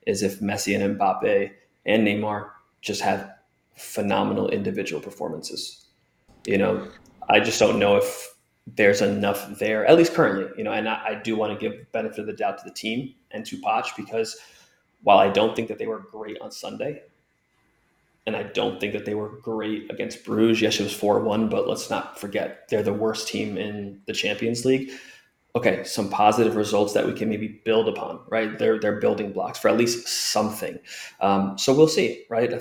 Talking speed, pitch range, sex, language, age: 195 wpm, 105-115 Hz, male, English, 20-39